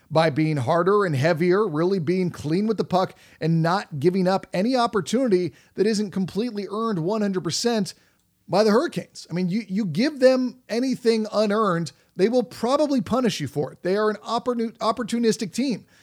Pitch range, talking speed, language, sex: 160-200 Hz, 170 wpm, English, male